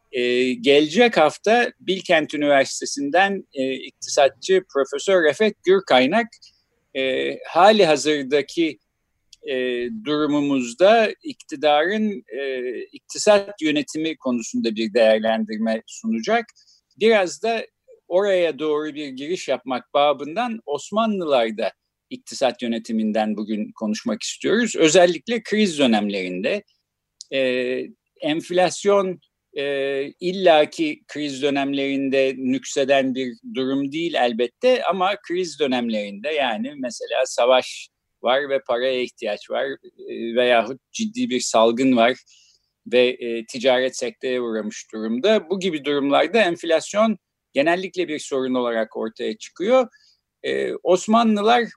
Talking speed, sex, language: 100 wpm, male, Turkish